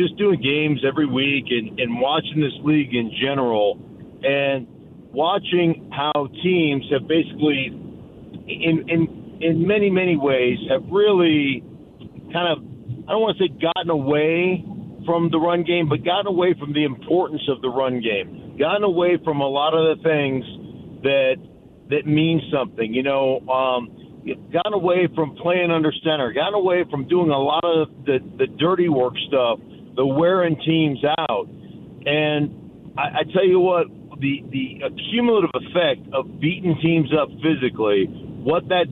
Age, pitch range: 50-69, 135-170 Hz